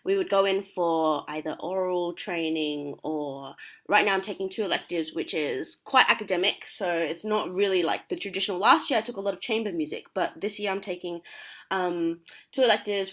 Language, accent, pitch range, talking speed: English, Australian, 160-205 Hz, 195 wpm